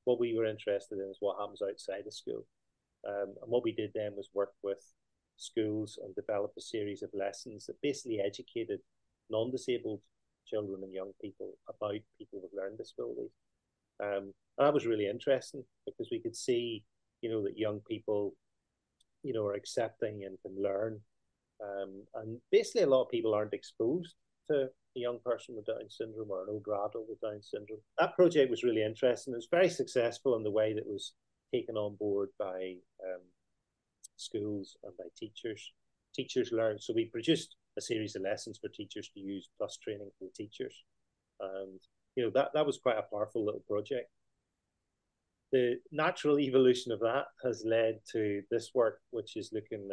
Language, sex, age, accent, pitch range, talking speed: English, male, 30-49, British, 100-140 Hz, 180 wpm